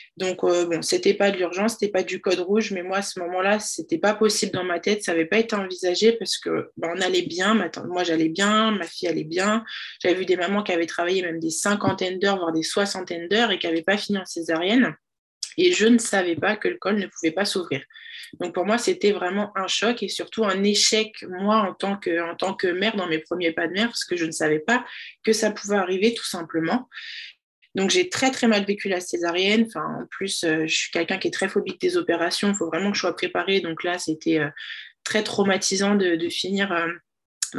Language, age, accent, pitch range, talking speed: French, 20-39, French, 175-215 Hz, 240 wpm